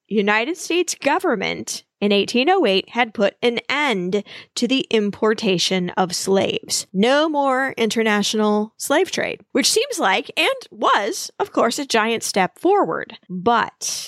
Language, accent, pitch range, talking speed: English, American, 205-295 Hz, 130 wpm